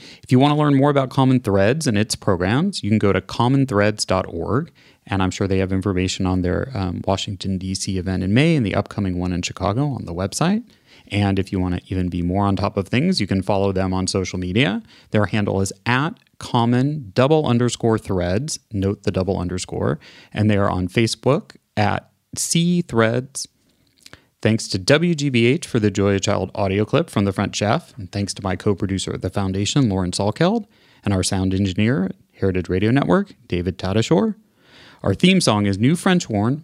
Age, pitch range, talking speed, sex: 30-49, 95-135 Hz, 195 wpm, male